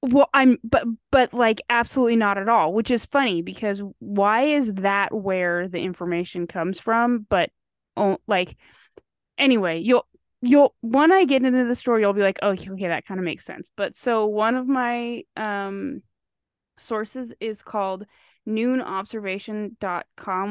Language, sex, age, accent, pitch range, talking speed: English, female, 20-39, American, 180-235 Hz, 160 wpm